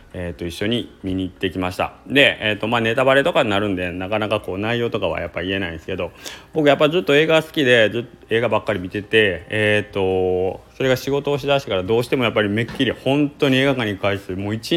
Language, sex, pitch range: Japanese, male, 90-120 Hz